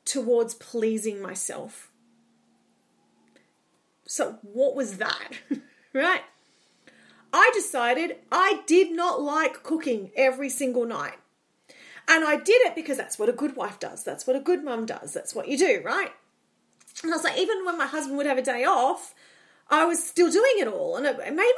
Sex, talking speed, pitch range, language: female, 175 wpm, 265-365 Hz, English